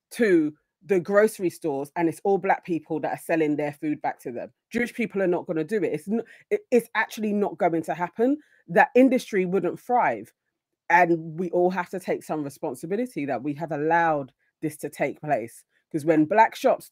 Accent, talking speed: British, 200 wpm